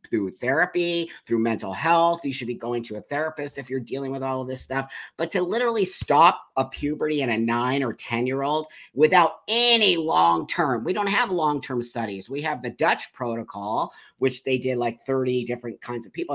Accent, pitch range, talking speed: American, 125-165 Hz, 200 wpm